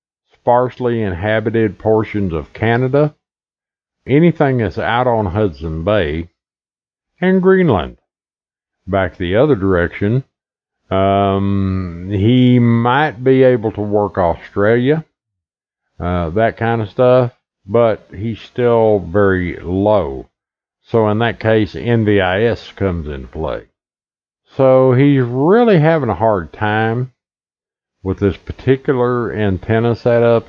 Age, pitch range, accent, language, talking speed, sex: 50-69, 95-120 Hz, American, English, 110 wpm, male